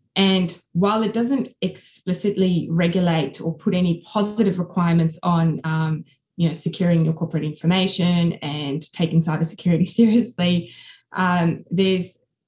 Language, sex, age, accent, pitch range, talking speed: English, female, 20-39, Australian, 160-185 Hz, 120 wpm